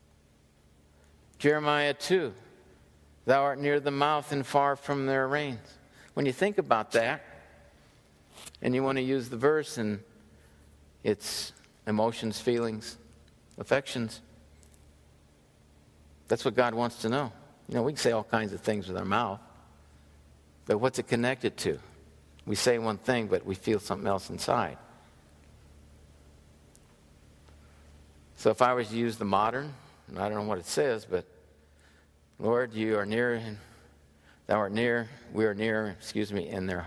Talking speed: 150 wpm